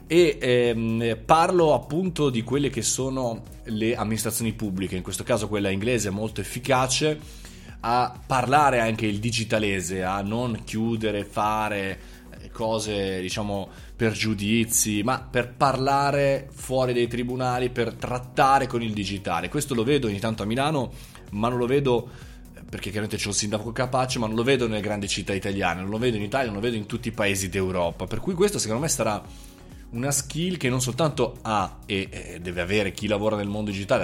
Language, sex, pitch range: Italian, male, 105-130 Hz